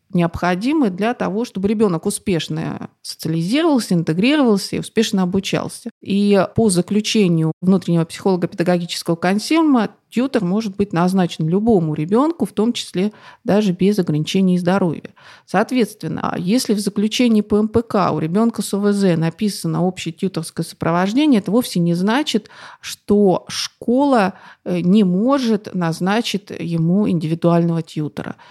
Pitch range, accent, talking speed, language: 170-220 Hz, native, 120 wpm, Russian